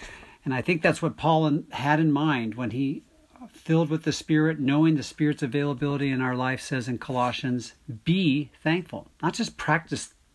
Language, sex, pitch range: English, male, 120-150 Hz